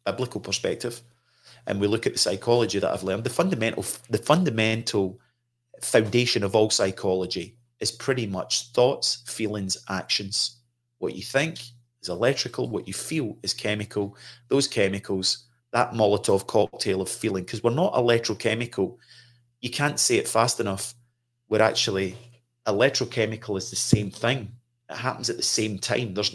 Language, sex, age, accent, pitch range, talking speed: English, male, 30-49, British, 95-120 Hz, 150 wpm